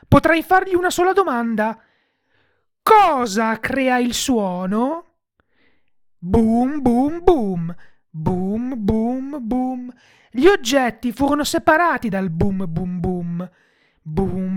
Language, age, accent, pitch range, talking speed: Italian, 30-49, native, 195-280 Hz, 100 wpm